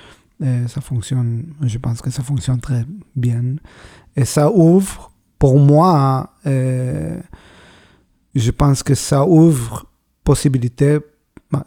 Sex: male